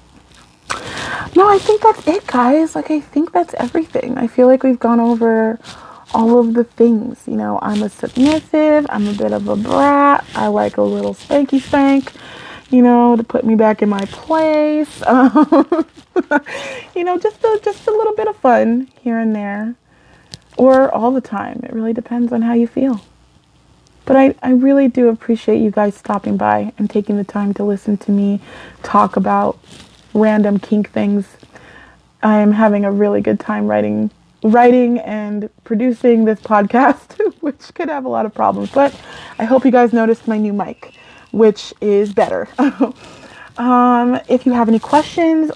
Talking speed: 175 wpm